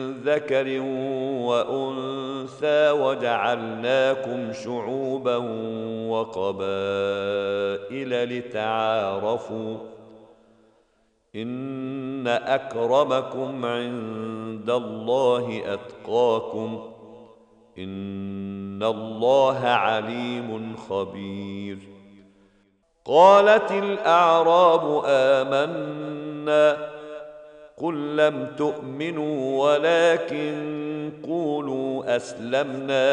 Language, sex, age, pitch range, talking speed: Arabic, male, 50-69, 110-150 Hz, 45 wpm